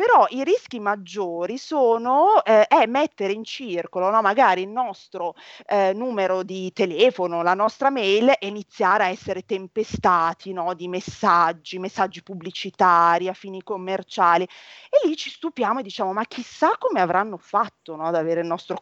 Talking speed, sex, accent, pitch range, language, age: 160 wpm, female, native, 180-225 Hz, Italian, 30-49